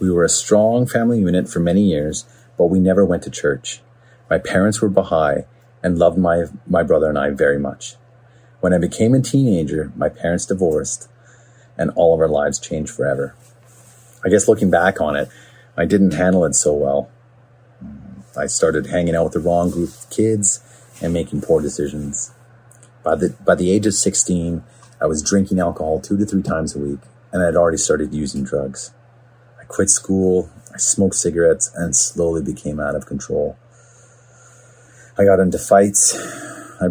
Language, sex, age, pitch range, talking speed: English, male, 30-49, 85-120 Hz, 175 wpm